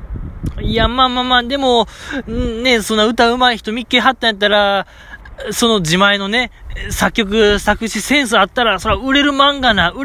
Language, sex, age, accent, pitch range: Japanese, male, 20-39, native, 155-235 Hz